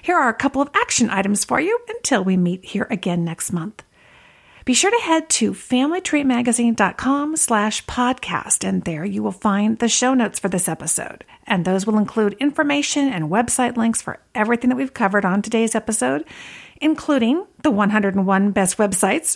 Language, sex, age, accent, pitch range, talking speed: English, female, 50-69, American, 190-255 Hz, 175 wpm